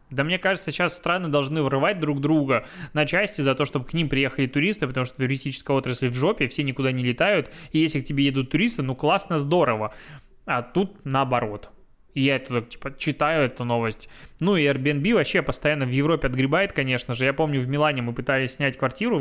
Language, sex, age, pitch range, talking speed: Russian, male, 20-39, 135-160 Hz, 200 wpm